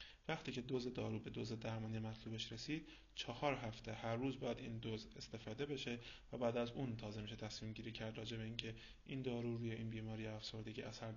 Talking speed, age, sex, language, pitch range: 200 wpm, 20-39, male, Persian, 110-130 Hz